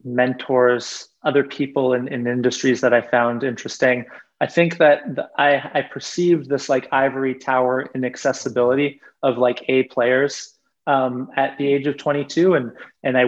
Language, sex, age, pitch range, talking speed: English, male, 20-39, 130-150 Hz, 165 wpm